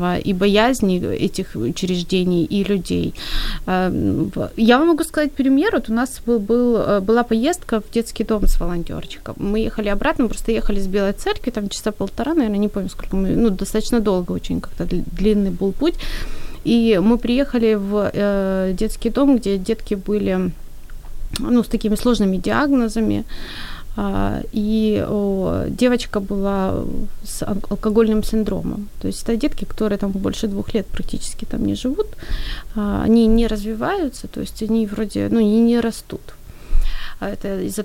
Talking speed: 150 wpm